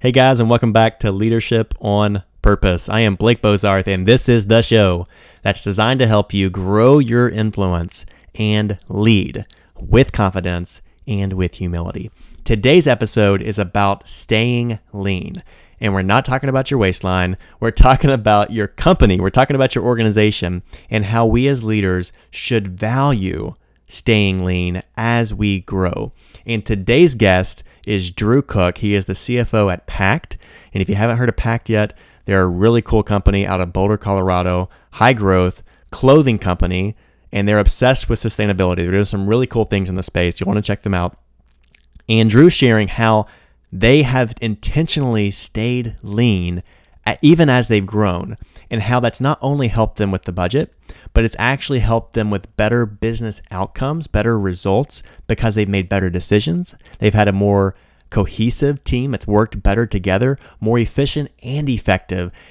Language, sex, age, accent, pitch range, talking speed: English, male, 30-49, American, 95-115 Hz, 165 wpm